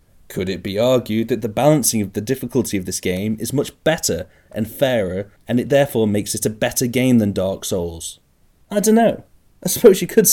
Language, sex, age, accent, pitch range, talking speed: English, male, 30-49, British, 100-120 Hz, 205 wpm